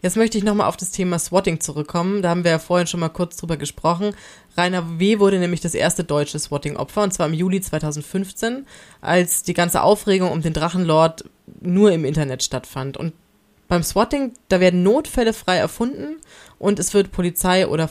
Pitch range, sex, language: 155-200 Hz, female, German